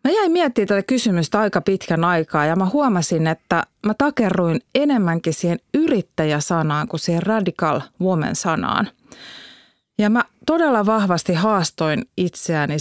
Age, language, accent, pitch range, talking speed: 30-49, Finnish, native, 165-220 Hz, 125 wpm